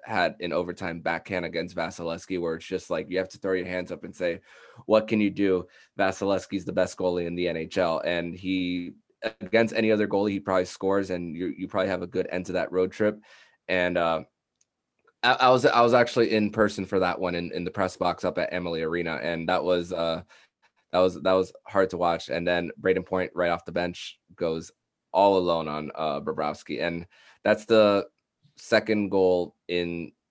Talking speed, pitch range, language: 205 wpm, 85-100 Hz, English